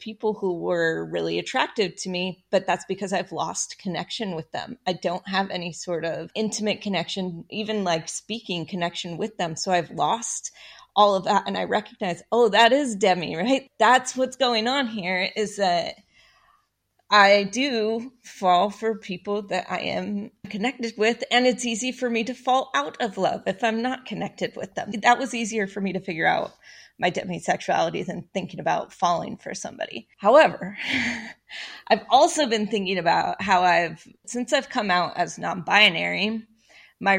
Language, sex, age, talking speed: English, female, 30-49, 175 wpm